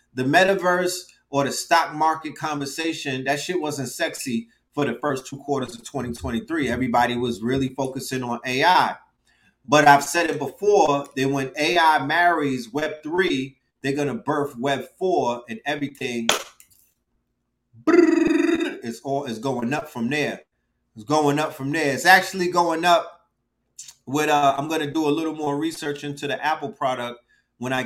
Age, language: 30-49, English